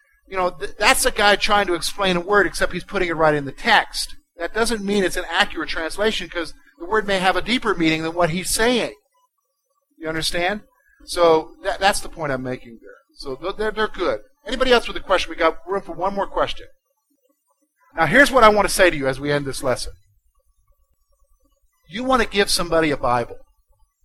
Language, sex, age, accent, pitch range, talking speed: English, male, 50-69, American, 125-200 Hz, 210 wpm